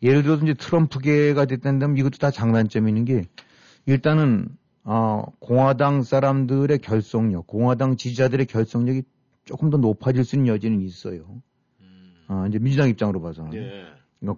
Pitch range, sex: 105-135 Hz, male